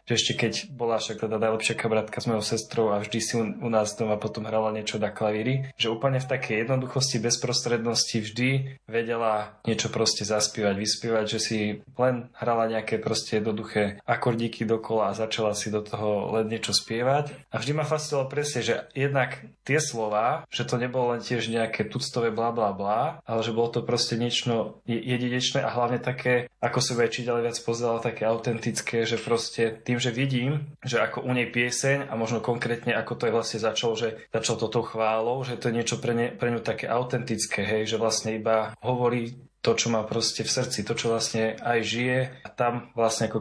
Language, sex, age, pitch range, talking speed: Slovak, male, 10-29, 110-125 Hz, 190 wpm